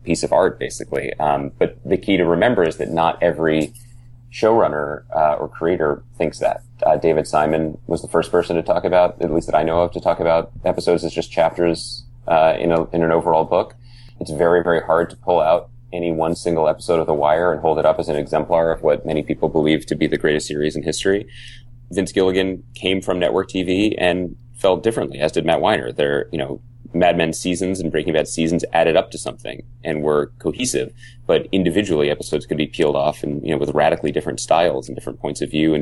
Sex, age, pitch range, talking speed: male, 30-49, 80-110 Hz, 225 wpm